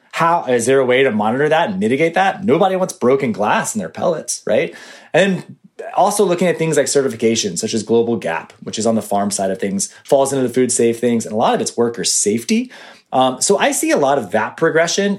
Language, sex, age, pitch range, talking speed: English, male, 30-49, 115-165 Hz, 235 wpm